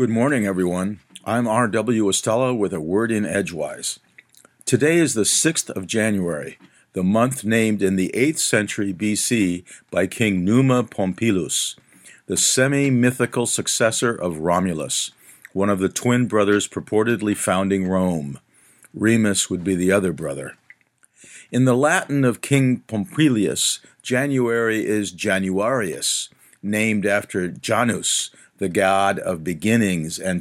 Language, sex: English, male